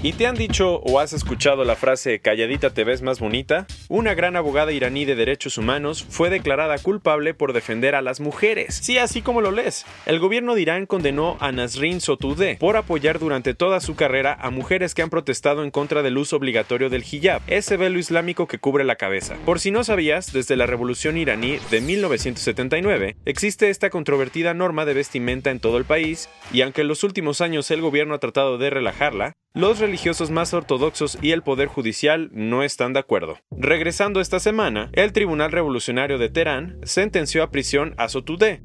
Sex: male